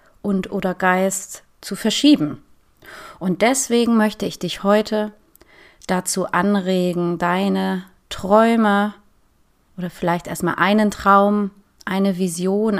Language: German